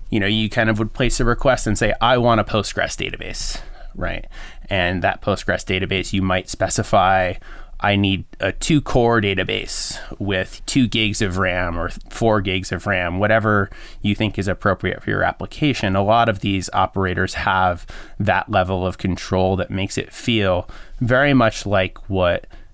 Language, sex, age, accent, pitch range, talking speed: English, male, 20-39, American, 95-110 Hz, 175 wpm